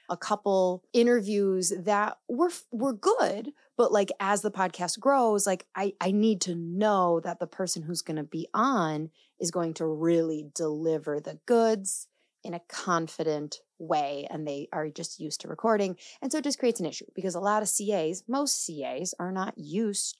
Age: 30-49